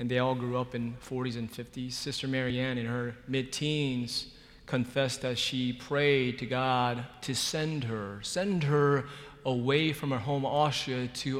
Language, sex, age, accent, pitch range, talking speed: English, male, 30-49, American, 125-145 Hz, 165 wpm